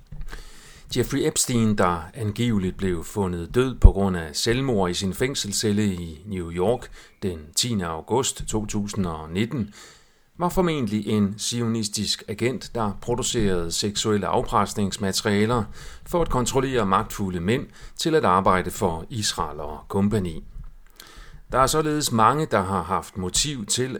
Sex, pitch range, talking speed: male, 95-120 Hz, 130 wpm